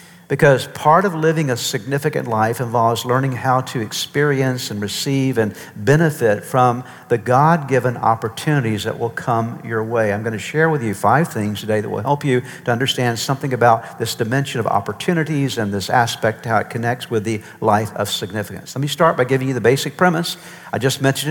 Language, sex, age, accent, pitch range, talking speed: English, male, 50-69, American, 130-170 Hz, 195 wpm